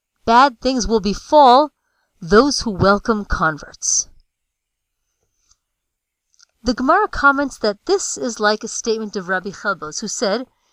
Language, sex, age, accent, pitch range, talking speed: English, female, 30-49, American, 200-275 Hz, 125 wpm